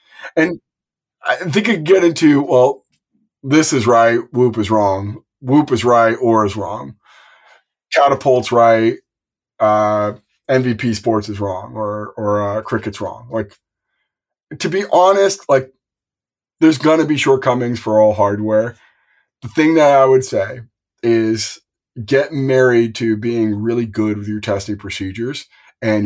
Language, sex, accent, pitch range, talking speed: English, male, American, 105-125 Hz, 145 wpm